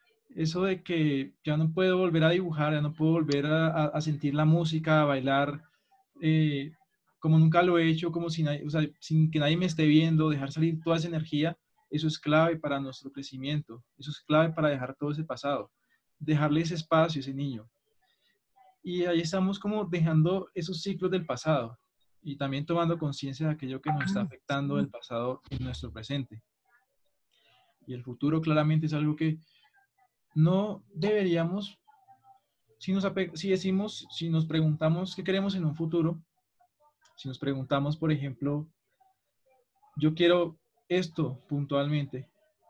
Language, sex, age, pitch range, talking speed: Spanish, male, 20-39, 145-175 Hz, 160 wpm